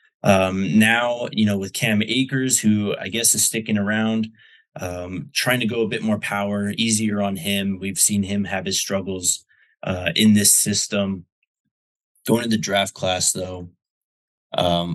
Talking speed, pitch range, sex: 160 wpm, 100-130 Hz, male